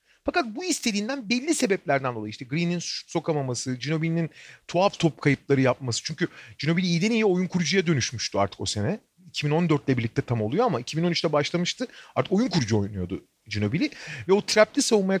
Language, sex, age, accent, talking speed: Turkish, male, 40-59, native, 160 wpm